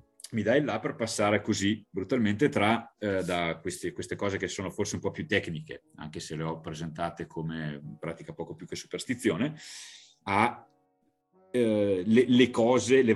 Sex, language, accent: male, Italian, native